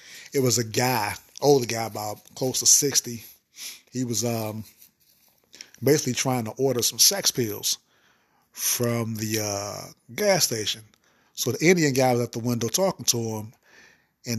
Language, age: English, 30-49